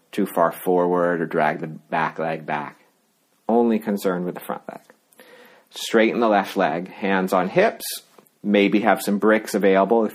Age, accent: 40-59, American